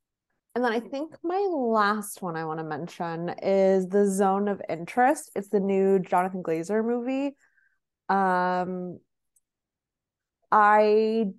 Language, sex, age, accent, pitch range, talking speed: English, female, 20-39, American, 180-225 Hz, 125 wpm